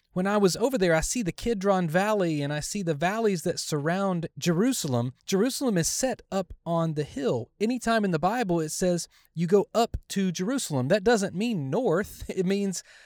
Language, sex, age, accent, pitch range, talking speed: English, male, 30-49, American, 150-210 Hz, 195 wpm